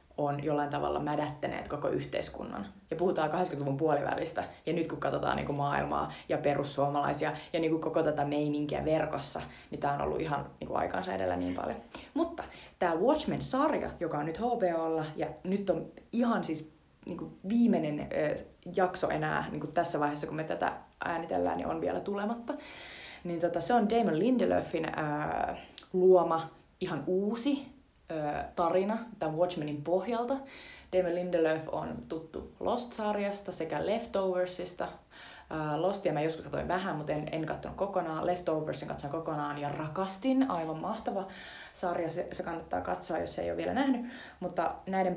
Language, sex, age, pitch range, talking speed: Finnish, female, 30-49, 155-200 Hz, 155 wpm